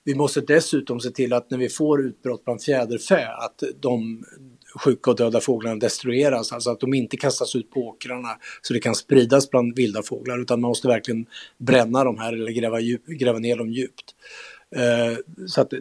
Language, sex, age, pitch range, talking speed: English, male, 60-79, 120-145 Hz, 195 wpm